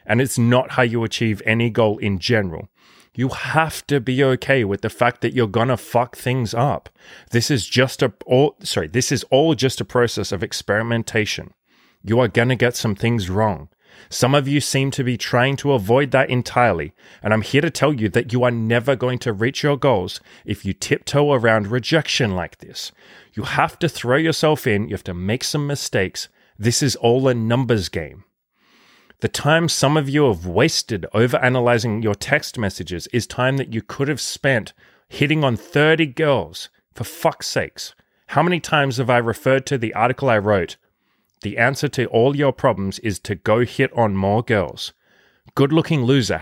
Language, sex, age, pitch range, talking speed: English, male, 30-49, 110-135 Hz, 195 wpm